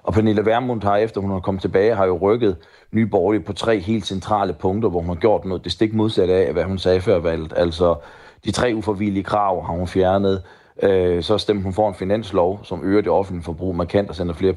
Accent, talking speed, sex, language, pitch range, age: native, 230 wpm, male, Danish, 85-100 Hz, 30-49